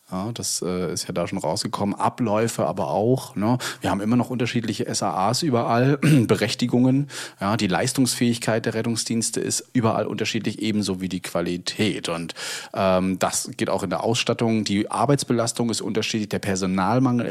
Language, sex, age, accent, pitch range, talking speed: German, male, 30-49, German, 100-120 Hz, 150 wpm